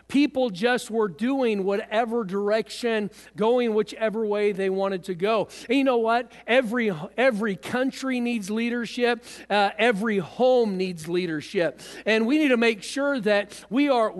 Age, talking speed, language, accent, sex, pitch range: 50-69, 150 wpm, English, American, male, 195-240 Hz